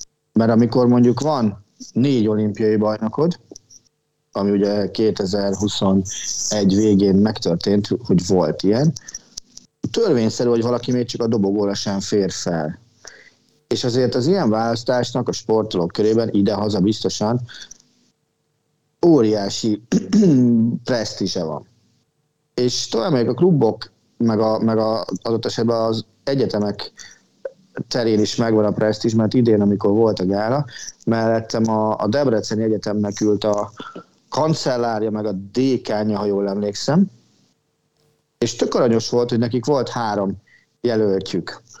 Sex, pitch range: male, 105-125 Hz